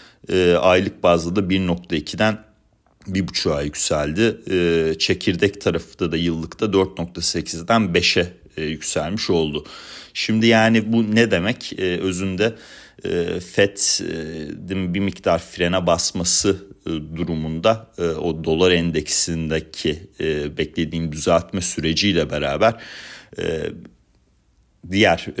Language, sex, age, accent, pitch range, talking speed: Turkish, male, 40-59, native, 80-95 Hz, 85 wpm